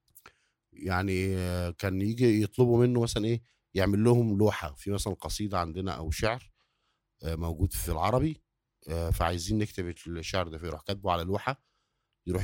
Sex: male